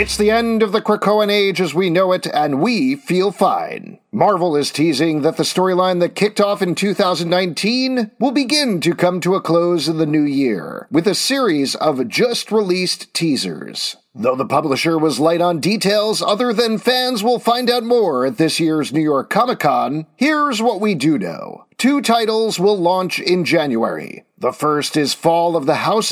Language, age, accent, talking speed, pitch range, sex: English, 40-59, American, 190 wpm, 165-210 Hz, male